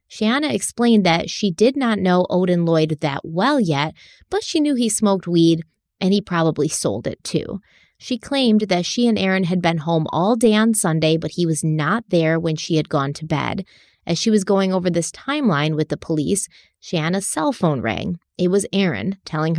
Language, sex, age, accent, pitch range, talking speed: English, female, 30-49, American, 160-205 Hz, 200 wpm